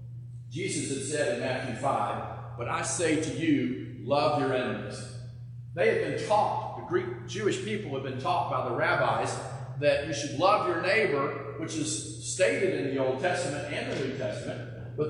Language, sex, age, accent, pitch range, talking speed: English, male, 40-59, American, 120-145 Hz, 185 wpm